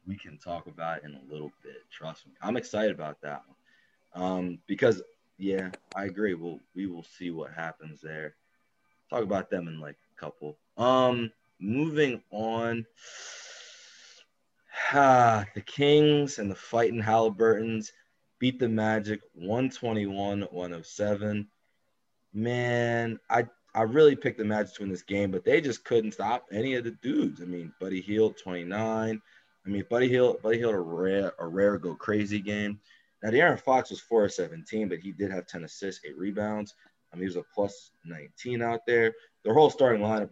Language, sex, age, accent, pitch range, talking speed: English, male, 20-39, American, 90-115 Hz, 170 wpm